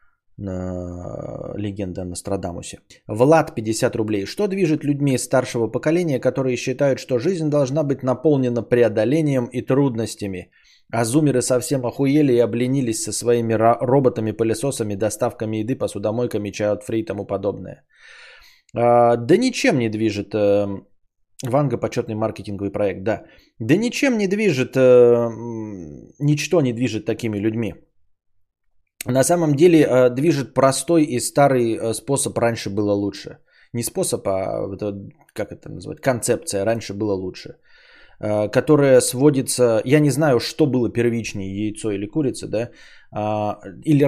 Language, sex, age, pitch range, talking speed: Bulgarian, male, 20-39, 110-140 Hz, 120 wpm